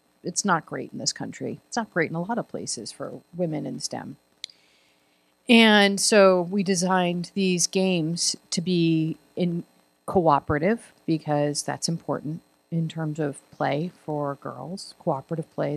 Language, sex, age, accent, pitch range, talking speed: English, female, 40-59, American, 150-195 Hz, 150 wpm